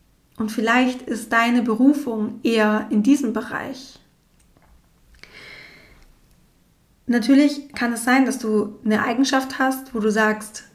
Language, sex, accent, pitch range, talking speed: German, female, German, 225-255 Hz, 115 wpm